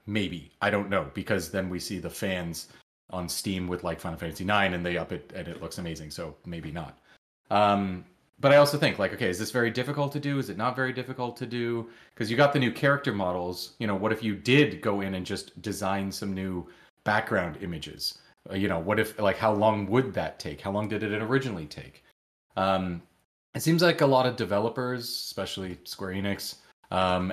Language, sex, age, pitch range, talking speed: English, male, 30-49, 90-115 Hz, 215 wpm